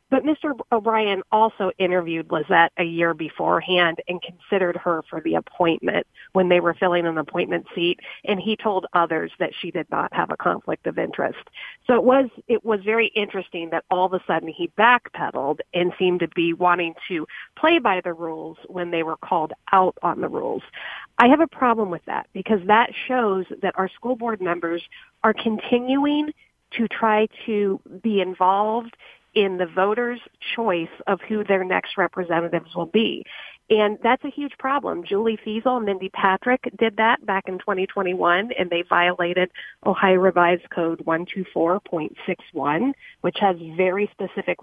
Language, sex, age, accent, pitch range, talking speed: English, female, 40-59, American, 175-225 Hz, 170 wpm